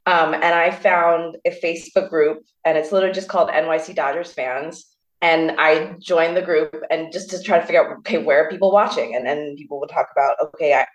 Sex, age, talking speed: female, 20-39, 220 wpm